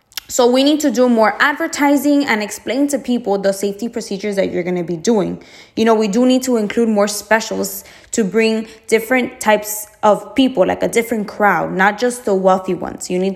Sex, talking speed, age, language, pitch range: female, 205 wpm, 20-39, English, 195-245 Hz